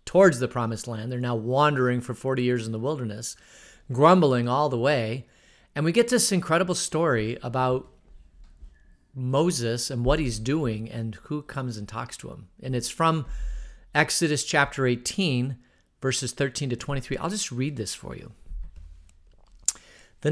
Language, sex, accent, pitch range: English, male, American, 115-160 Hz